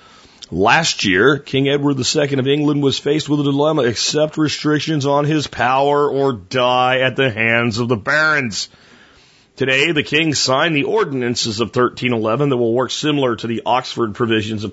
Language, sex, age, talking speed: English, male, 40-59, 170 wpm